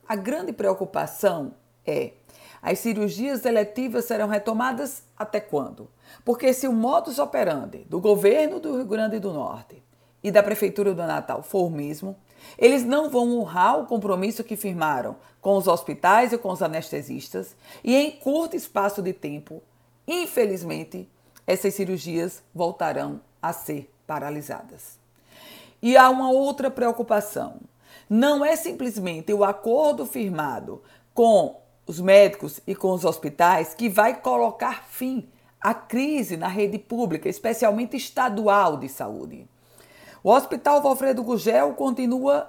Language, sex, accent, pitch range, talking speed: Portuguese, female, Brazilian, 190-255 Hz, 135 wpm